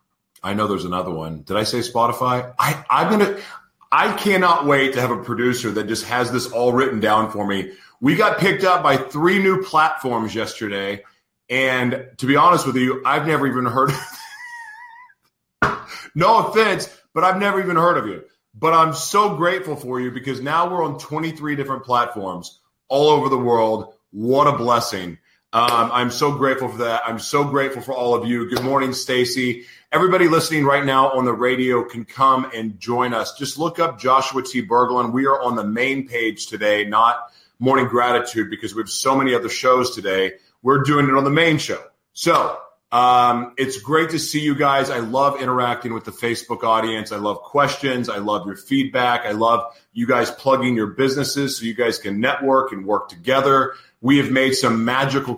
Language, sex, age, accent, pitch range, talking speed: English, male, 30-49, American, 115-145 Hz, 195 wpm